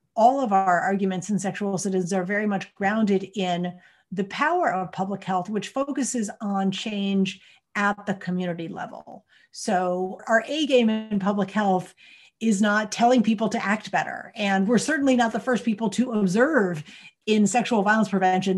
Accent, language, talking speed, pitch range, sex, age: American, English, 170 wpm, 195-235 Hz, female, 50-69